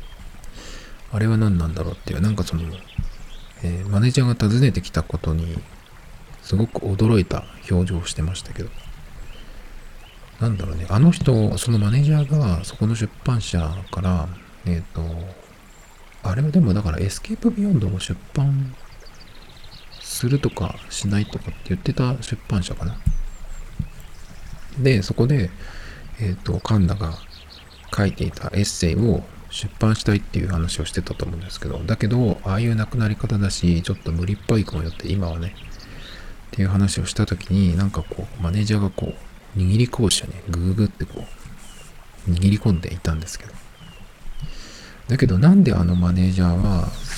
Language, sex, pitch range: Japanese, male, 85-110 Hz